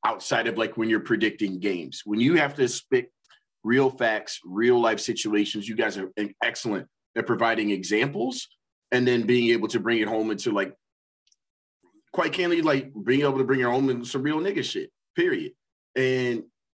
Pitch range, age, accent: 105-140 Hz, 30-49, American